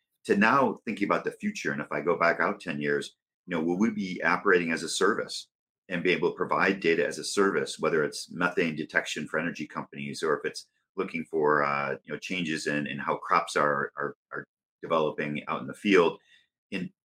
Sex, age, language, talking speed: male, 40-59, English, 215 wpm